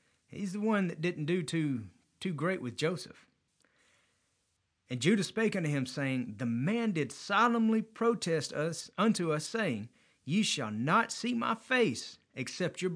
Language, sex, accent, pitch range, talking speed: English, male, American, 115-190 Hz, 155 wpm